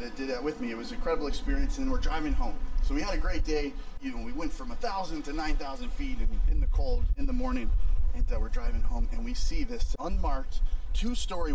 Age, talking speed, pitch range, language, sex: 30-49, 255 wpm, 160-255 Hz, English, male